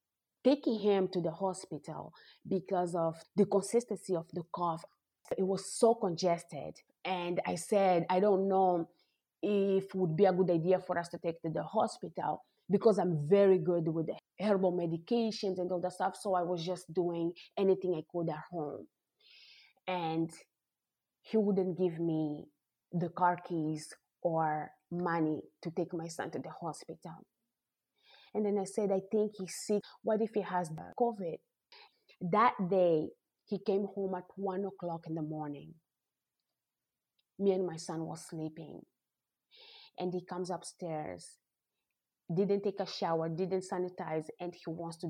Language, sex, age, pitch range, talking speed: English, female, 30-49, 165-195 Hz, 155 wpm